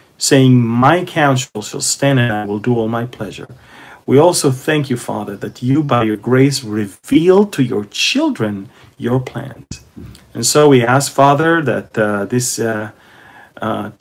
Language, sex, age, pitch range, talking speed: English, male, 40-59, 110-145 Hz, 165 wpm